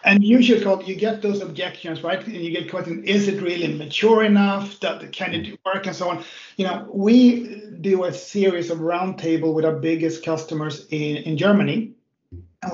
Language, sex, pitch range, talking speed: Danish, male, 160-200 Hz, 190 wpm